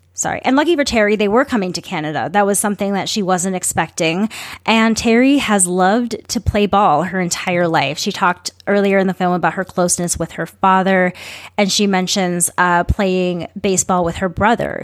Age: 20-39